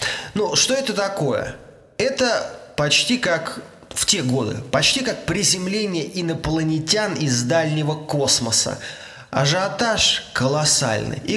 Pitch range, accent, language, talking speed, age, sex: 130-195 Hz, native, Russian, 100 wpm, 20-39, male